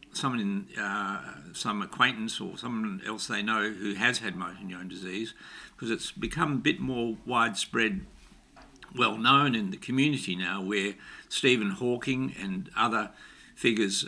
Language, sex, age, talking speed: English, male, 60-79, 150 wpm